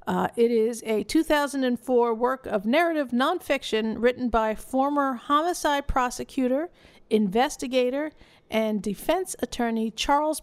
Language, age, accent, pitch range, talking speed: English, 50-69, American, 220-270 Hz, 110 wpm